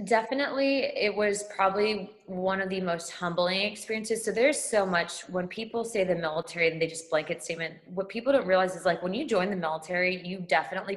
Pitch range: 165-200 Hz